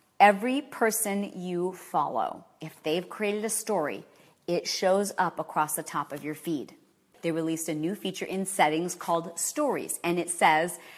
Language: English